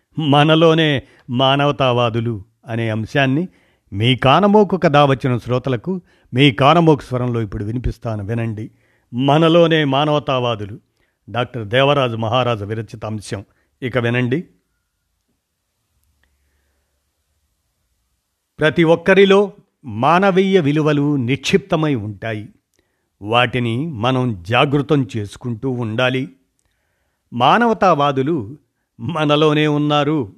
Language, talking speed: Telugu, 75 wpm